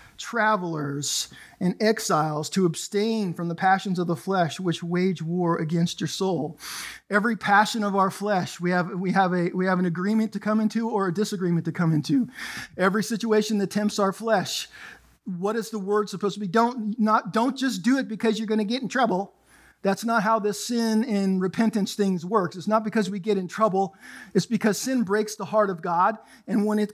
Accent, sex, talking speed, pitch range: American, male, 205 wpm, 180-220 Hz